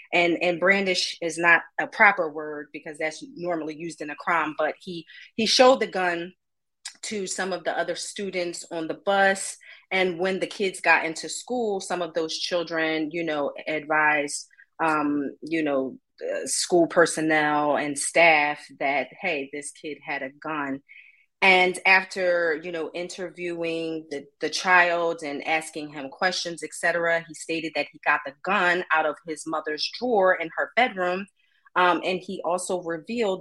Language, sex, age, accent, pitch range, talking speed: English, female, 30-49, American, 155-180 Hz, 165 wpm